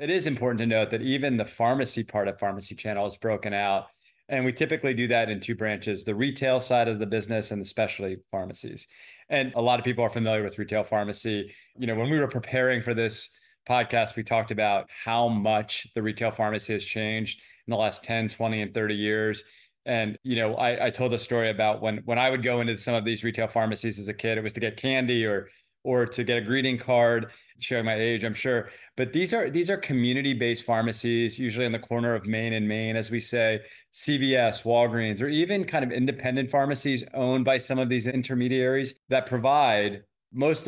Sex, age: male, 30-49